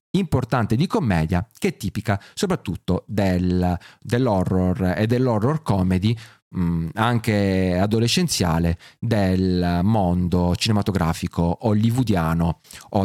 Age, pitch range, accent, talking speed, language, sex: 30-49, 95-130 Hz, native, 90 wpm, Italian, male